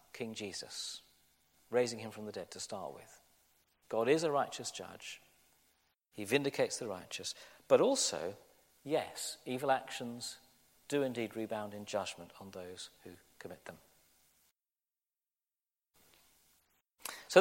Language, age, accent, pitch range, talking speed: English, 40-59, British, 90-145 Hz, 120 wpm